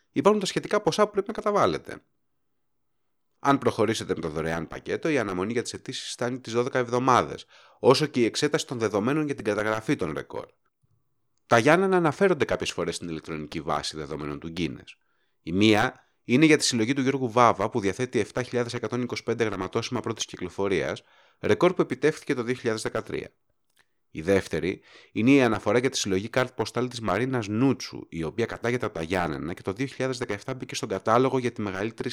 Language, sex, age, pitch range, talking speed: Greek, male, 30-49, 100-130 Hz, 175 wpm